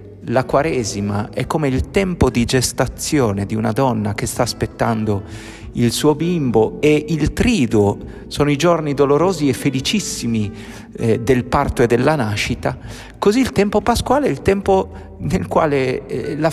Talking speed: 155 wpm